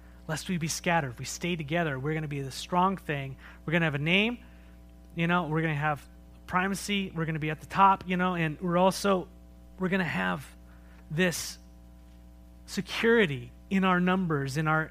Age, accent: 30-49, American